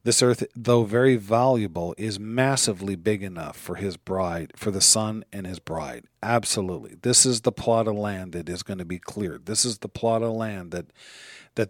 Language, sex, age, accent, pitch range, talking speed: English, male, 40-59, American, 95-115 Hz, 200 wpm